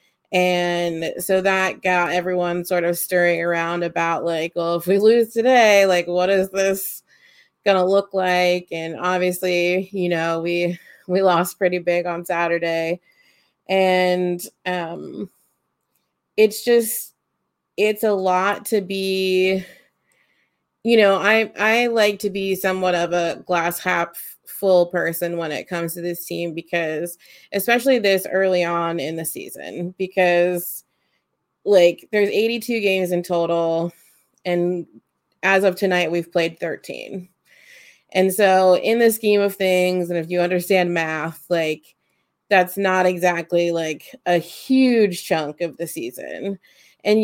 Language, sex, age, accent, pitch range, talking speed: English, female, 30-49, American, 170-195 Hz, 140 wpm